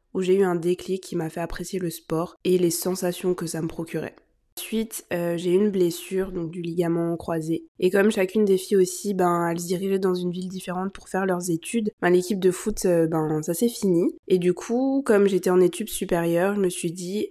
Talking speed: 225 wpm